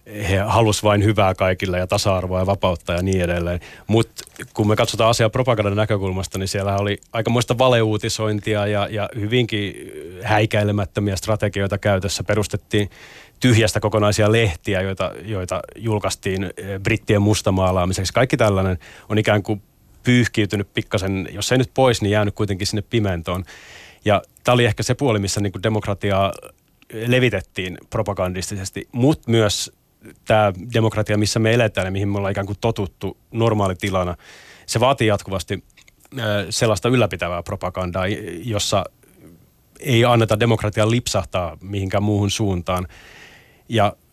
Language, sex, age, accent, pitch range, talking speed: Finnish, male, 30-49, native, 95-115 Hz, 130 wpm